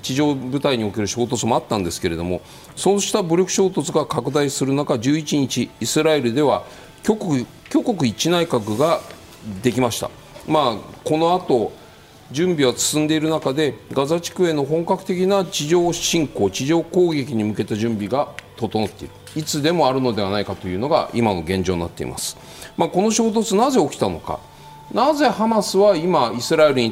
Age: 40-59